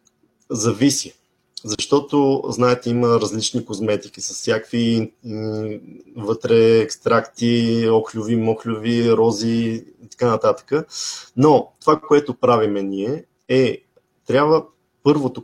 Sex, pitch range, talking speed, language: male, 110-135 Hz, 95 wpm, Bulgarian